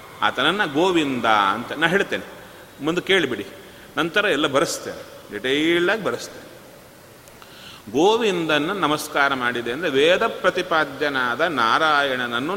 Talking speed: 95 wpm